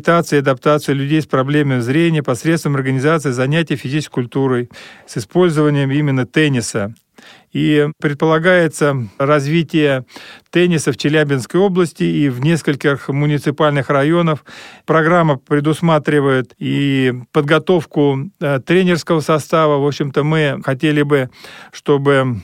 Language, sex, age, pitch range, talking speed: Russian, male, 40-59, 140-165 Hz, 105 wpm